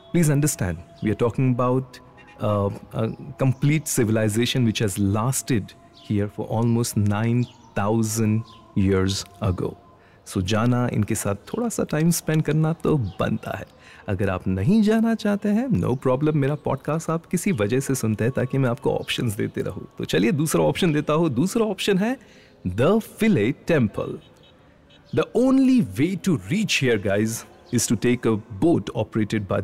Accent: Indian